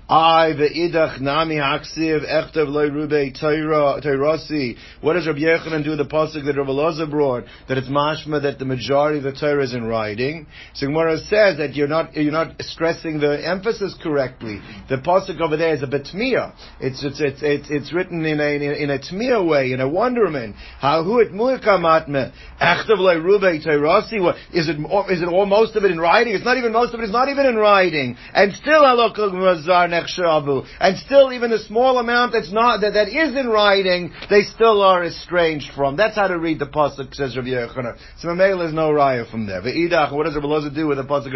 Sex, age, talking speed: male, 50-69, 195 wpm